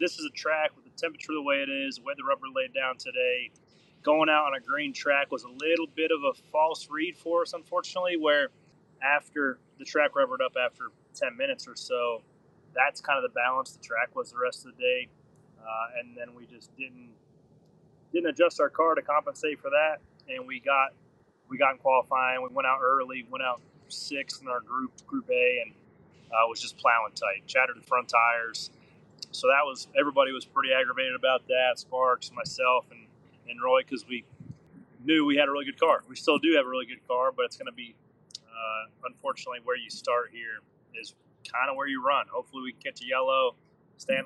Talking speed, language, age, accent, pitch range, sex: 215 wpm, English, 30-49, American, 130-185 Hz, male